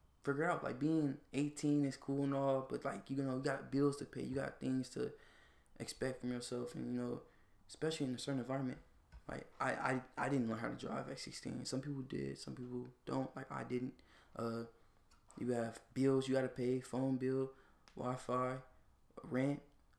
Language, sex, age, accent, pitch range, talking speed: English, male, 20-39, American, 120-140 Hz, 195 wpm